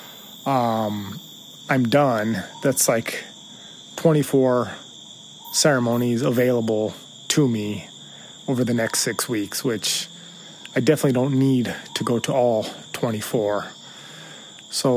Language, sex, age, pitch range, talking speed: English, male, 30-49, 120-135 Hz, 105 wpm